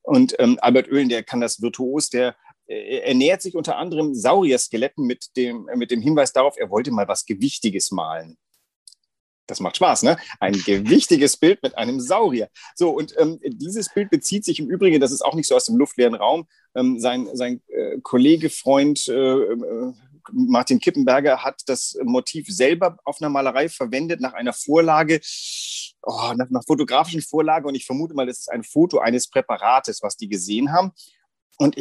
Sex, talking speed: male, 175 wpm